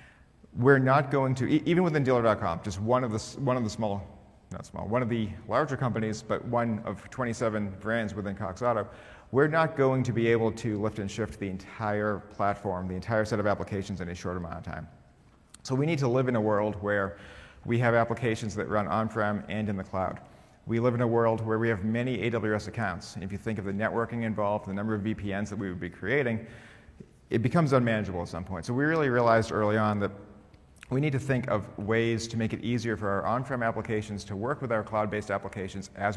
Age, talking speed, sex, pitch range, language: 40-59, 220 wpm, male, 100-120 Hz, English